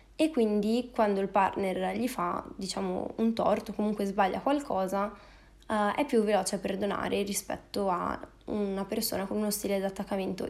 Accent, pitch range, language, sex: native, 200-235 Hz, Italian, female